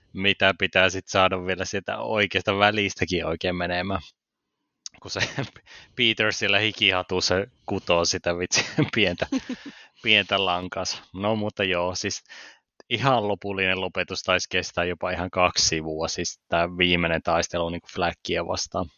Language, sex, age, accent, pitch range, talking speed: Finnish, male, 20-39, native, 90-100 Hz, 130 wpm